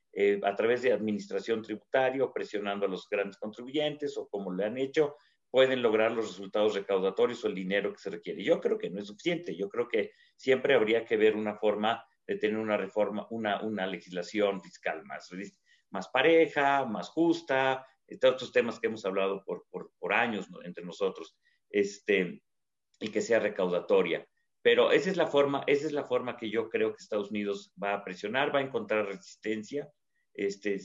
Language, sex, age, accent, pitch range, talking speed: Spanish, male, 40-59, Mexican, 105-150 Hz, 190 wpm